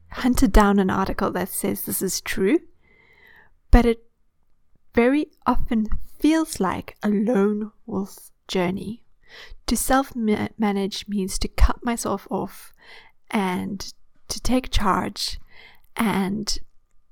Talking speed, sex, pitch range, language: 110 wpm, female, 190-235 Hz, English